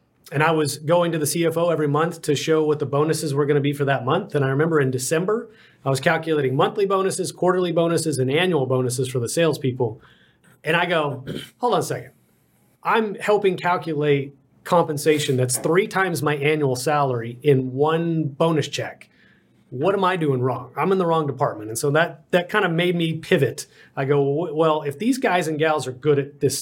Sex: male